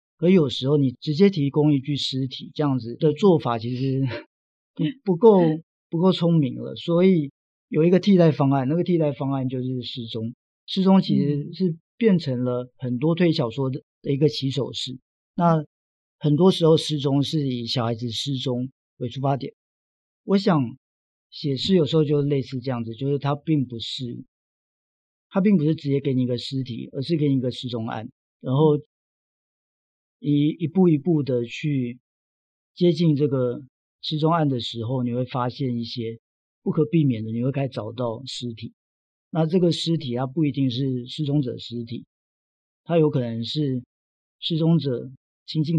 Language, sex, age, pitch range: Chinese, male, 50-69, 120-155 Hz